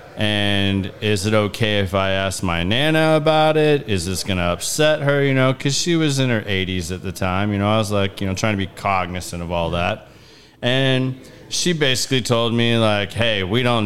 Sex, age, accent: male, 40-59, American